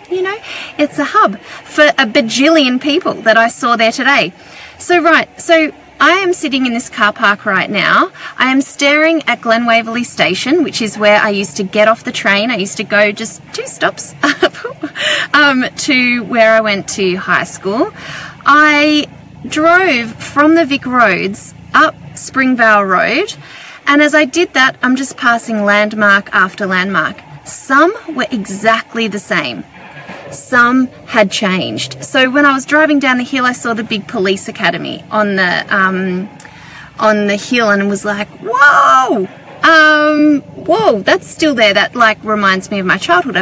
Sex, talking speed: female, 170 wpm